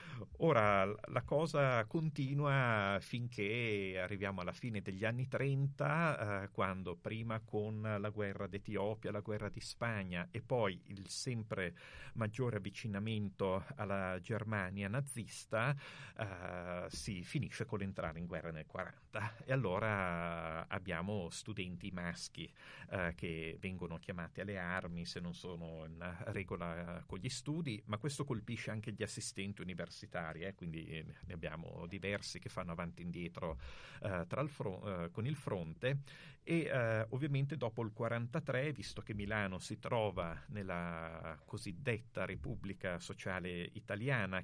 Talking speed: 135 wpm